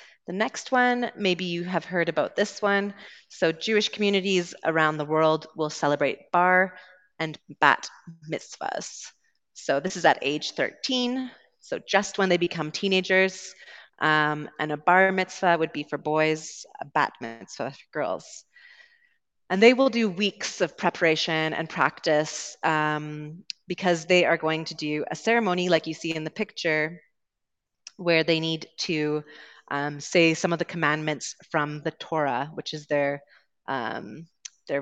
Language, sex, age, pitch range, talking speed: English, female, 30-49, 150-185 Hz, 155 wpm